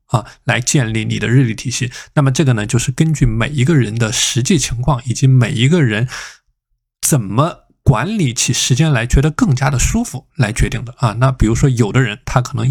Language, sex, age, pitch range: Chinese, male, 20-39, 120-140 Hz